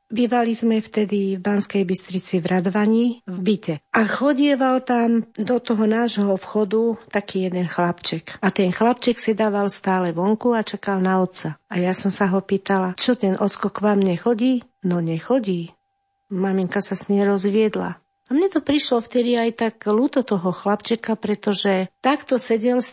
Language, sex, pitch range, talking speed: Slovak, female, 195-230 Hz, 165 wpm